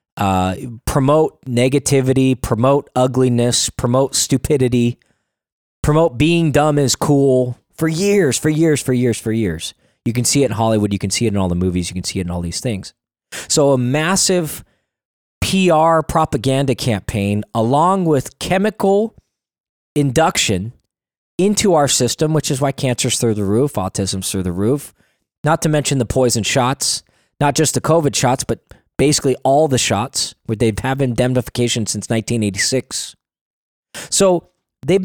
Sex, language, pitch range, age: male, English, 110-150 Hz, 20-39